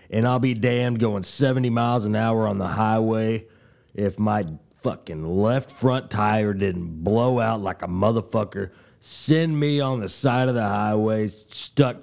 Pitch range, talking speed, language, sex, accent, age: 100-125 Hz, 165 wpm, English, male, American, 30-49